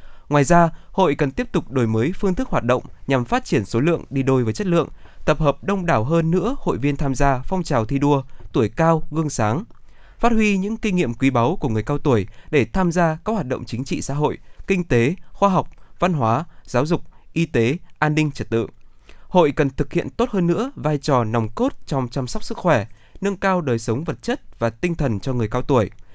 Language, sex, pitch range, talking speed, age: Vietnamese, male, 115-170 Hz, 240 wpm, 20-39